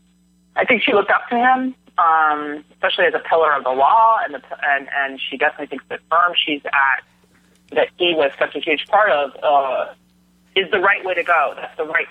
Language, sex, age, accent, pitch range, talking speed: English, male, 30-49, American, 125-165 Hz, 220 wpm